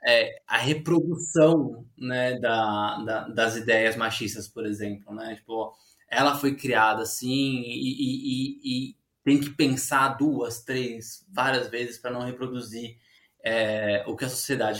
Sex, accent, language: male, Brazilian, Portuguese